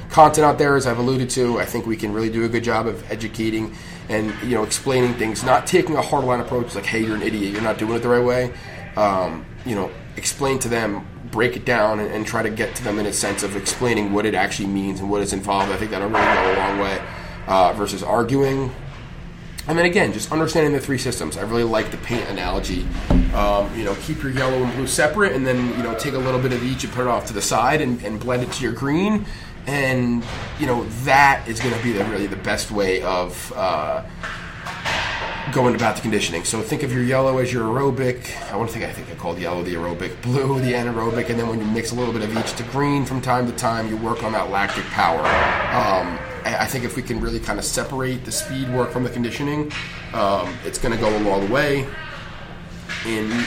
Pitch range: 105-130 Hz